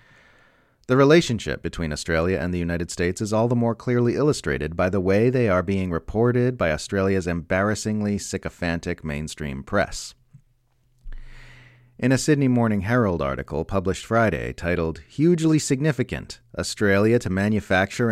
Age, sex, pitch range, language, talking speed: 30-49, male, 90-120 Hz, English, 135 wpm